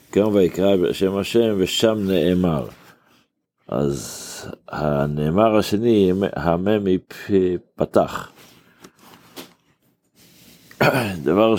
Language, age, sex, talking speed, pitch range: Hebrew, 60-79, male, 60 wpm, 90-105 Hz